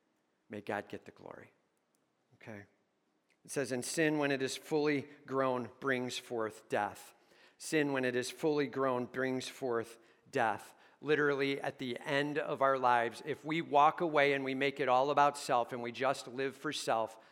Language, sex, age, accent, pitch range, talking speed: English, male, 50-69, American, 135-205 Hz, 175 wpm